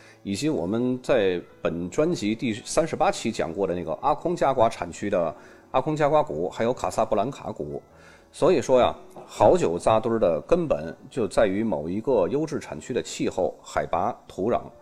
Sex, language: male, Chinese